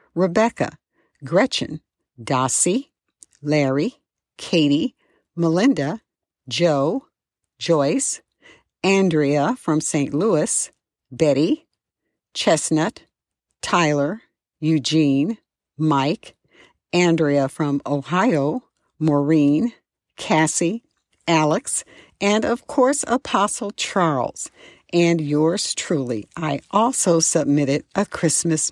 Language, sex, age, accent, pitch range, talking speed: English, female, 50-69, American, 150-205 Hz, 75 wpm